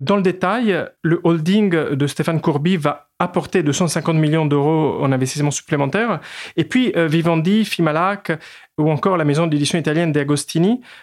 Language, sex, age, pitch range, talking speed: French, male, 30-49, 145-180 Hz, 145 wpm